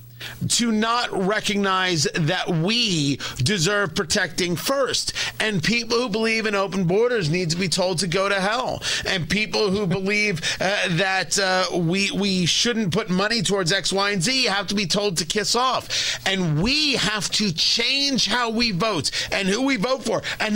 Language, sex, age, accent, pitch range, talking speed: English, male, 30-49, American, 180-230 Hz, 180 wpm